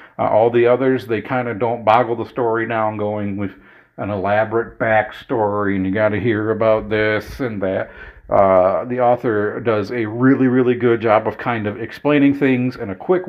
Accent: American